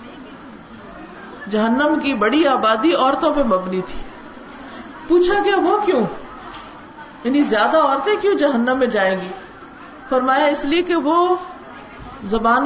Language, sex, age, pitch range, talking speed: Urdu, female, 50-69, 245-325 Hz, 125 wpm